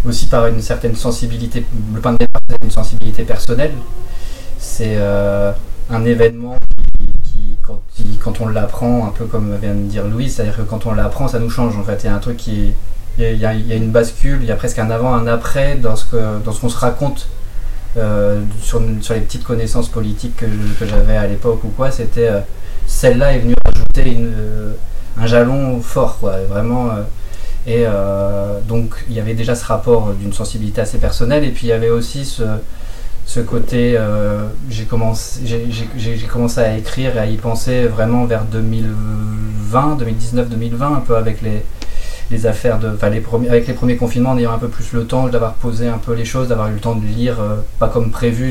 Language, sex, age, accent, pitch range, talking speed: French, male, 20-39, French, 105-120 Hz, 215 wpm